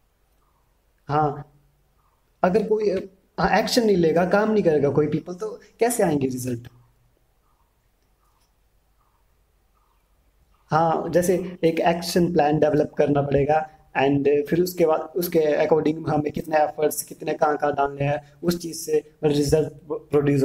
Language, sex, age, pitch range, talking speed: Hindi, male, 30-49, 140-190 Hz, 120 wpm